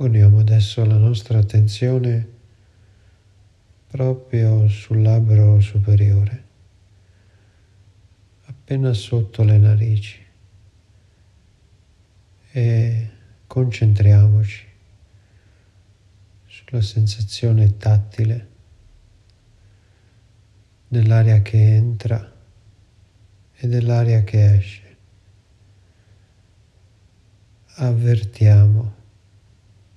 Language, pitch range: Italian, 100-110 Hz